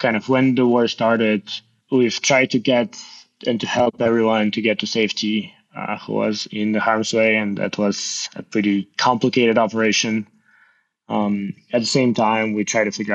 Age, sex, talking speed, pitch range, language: 20-39, male, 185 wpm, 100-115 Hz, English